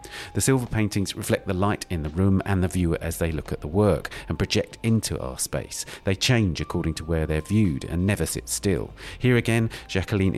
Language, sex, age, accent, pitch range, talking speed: English, male, 50-69, British, 80-105 Hz, 215 wpm